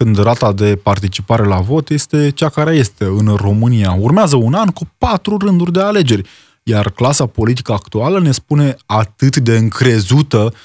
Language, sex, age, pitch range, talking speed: Romanian, male, 20-39, 120-195 Hz, 165 wpm